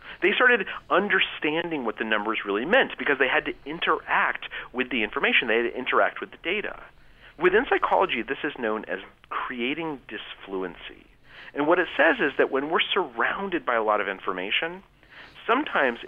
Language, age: English, 40-59